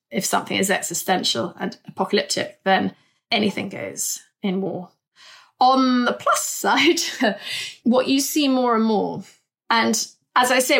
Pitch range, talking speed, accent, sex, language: 195-230 Hz, 140 wpm, British, female, English